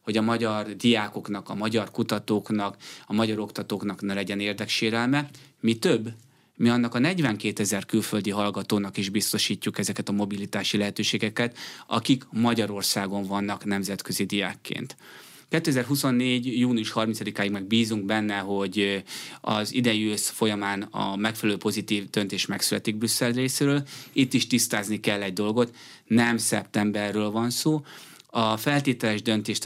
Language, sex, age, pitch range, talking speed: Hungarian, male, 20-39, 105-125 Hz, 125 wpm